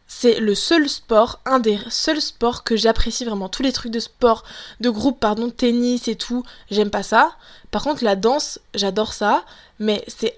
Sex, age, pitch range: female, 20-39, 210-270 Hz